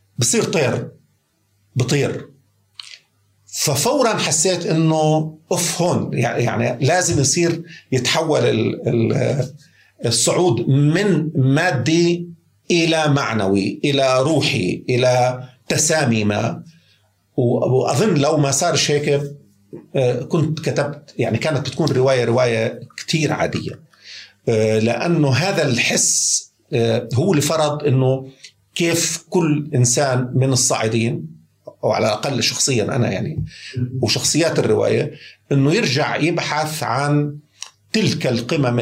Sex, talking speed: male, 100 wpm